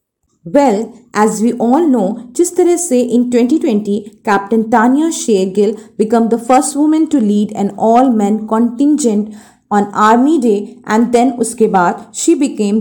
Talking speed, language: 150 wpm, Hindi